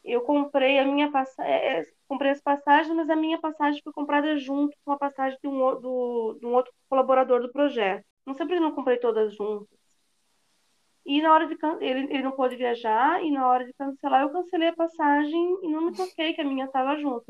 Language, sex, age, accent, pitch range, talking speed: Portuguese, female, 20-39, Brazilian, 230-295 Hz, 220 wpm